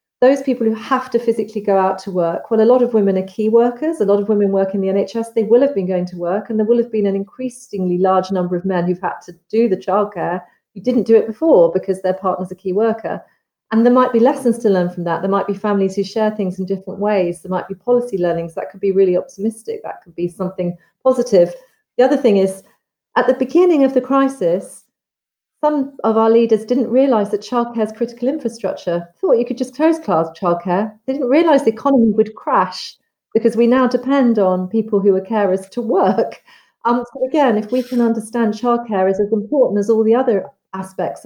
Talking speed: 230 wpm